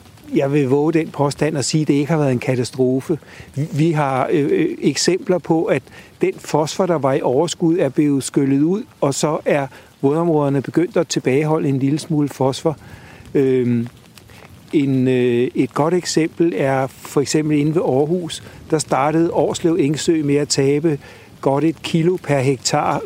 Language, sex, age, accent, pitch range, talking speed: Danish, male, 60-79, native, 135-165 Hz, 170 wpm